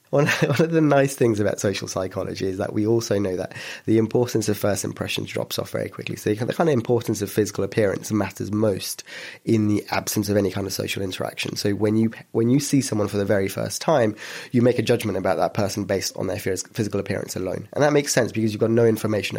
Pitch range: 100-120 Hz